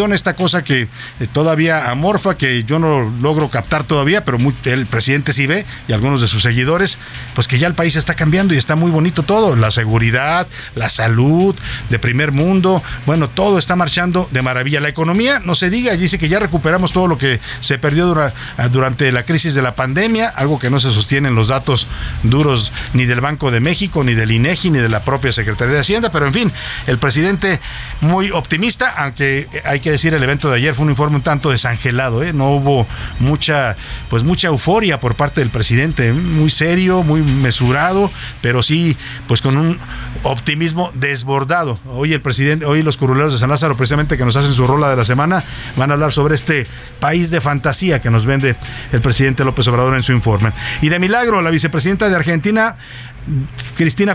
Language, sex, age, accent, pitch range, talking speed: Spanish, male, 50-69, Mexican, 125-170 Hz, 195 wpm